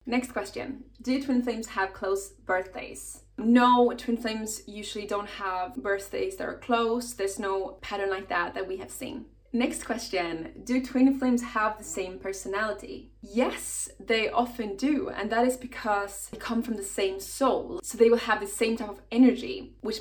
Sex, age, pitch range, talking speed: female, 20-39, 200-240 Hz, 180 wpm